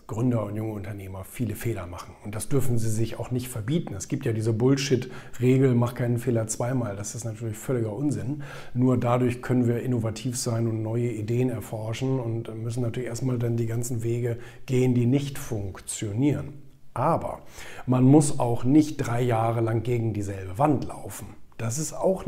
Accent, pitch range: German, 115-145 Hz